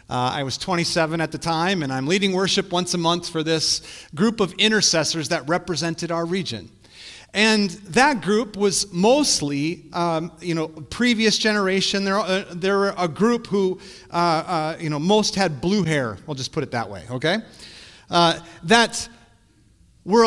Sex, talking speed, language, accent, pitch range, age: male, 170 wpm, English, American, 155-200 Hz, 40-59